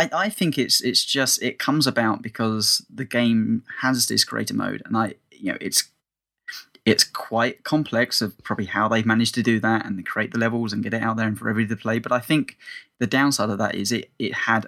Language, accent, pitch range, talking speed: English, British, 110-125 Hz, 230 wpm